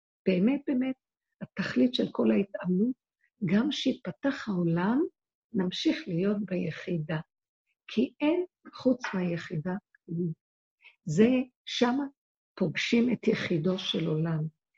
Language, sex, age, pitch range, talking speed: Hebrew, female, 50-69, 170-215 Hz, 95 wpm